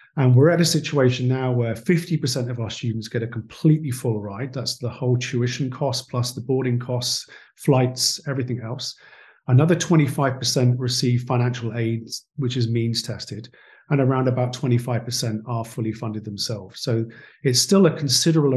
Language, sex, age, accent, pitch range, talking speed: English, male, 40-59, British, 115-135 Hz, 160 wpm